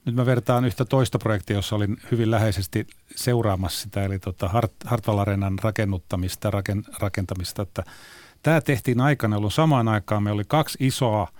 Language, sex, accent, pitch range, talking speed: Finnish, male, native, 100-125 Hz, 140 wpm